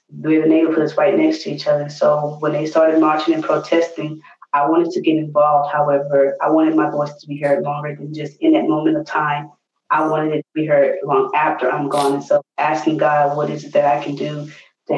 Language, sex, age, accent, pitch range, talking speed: English, female, 20-39, American, 145-160 Hz, 235 wpm